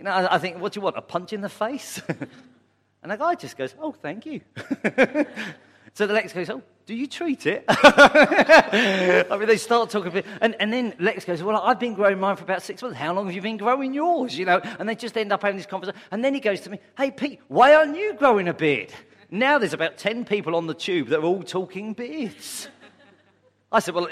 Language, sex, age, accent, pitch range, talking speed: English, male, 40-59, British, 130-215 Hz, 240 wpm